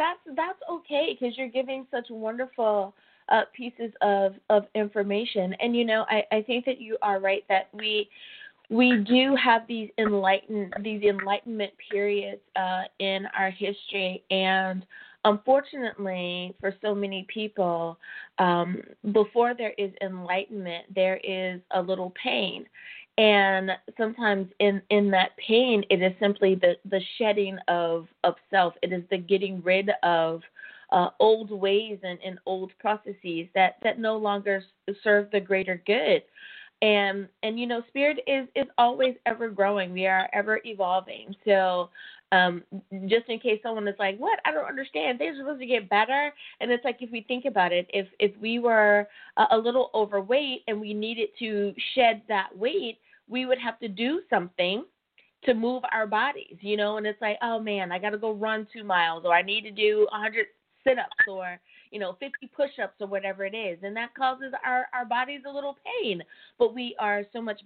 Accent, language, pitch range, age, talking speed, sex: American, English, 190-240 Hz, 20-39, 175 wpm, female